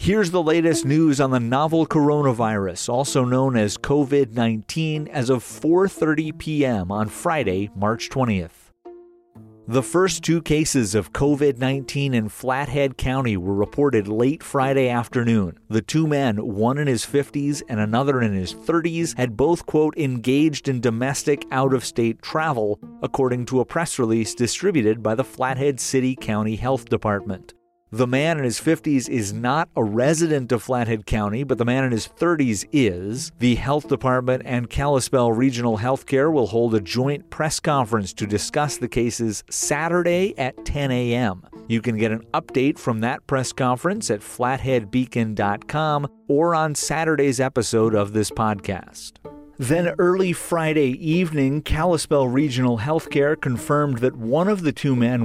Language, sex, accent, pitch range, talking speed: English, male, American, 115-150 Hz, 150 wpm